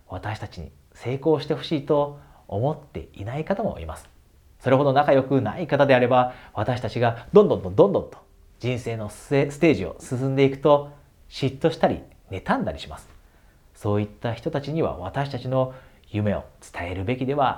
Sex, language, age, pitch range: male, Japanese, 40-59, 95-140 Hz